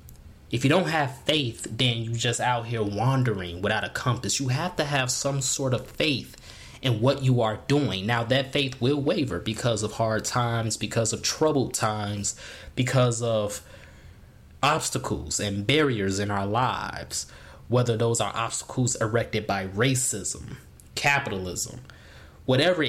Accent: American